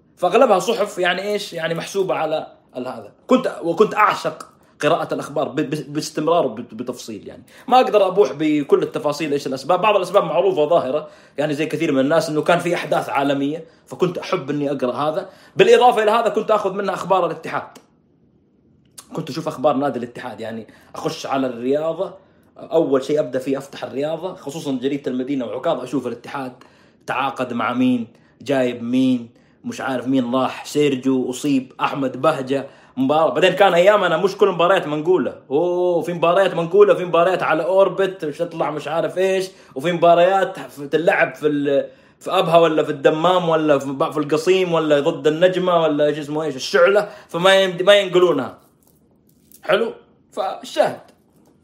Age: 30-49